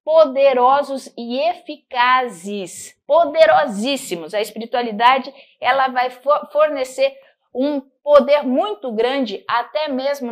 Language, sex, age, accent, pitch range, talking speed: Portuguese, female, 50-69, Brazilian, 210-275 Hz, 85 wpm